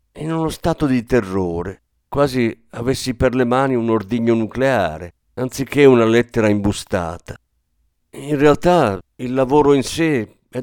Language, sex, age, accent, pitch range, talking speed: Italian, male, 50-69, native, 100-135 Hz, 135 wpm